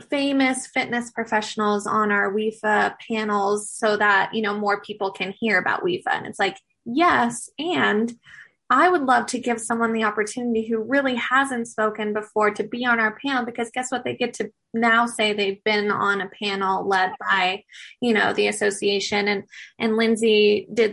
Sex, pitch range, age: female, 205-235 Hz, 20-39